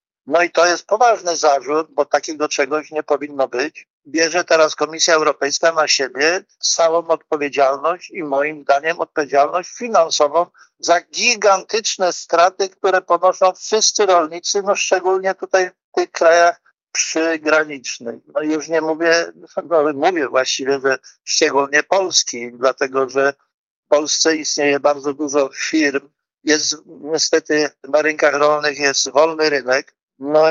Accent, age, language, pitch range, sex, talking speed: native, 50-69, Polish, 150-180 Hz, male, 130 wpm